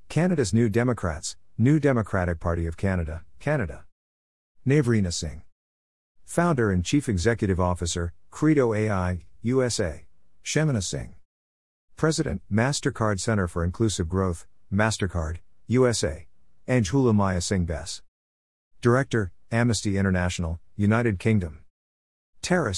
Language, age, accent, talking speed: English, 50-69, American, 105 wpm